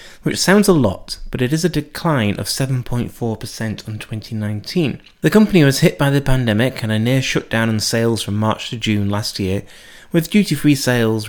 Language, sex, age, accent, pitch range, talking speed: English, male, 30-49, British, 105-140 Hz, 185 wpm